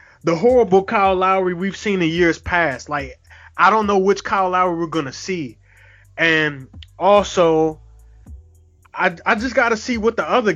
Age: 20-39